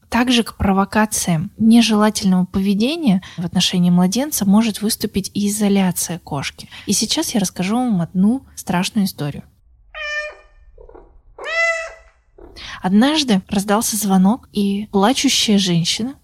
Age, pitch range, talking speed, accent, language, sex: 20-39, 180-230 Hz, 100 wpm, native, Russian, female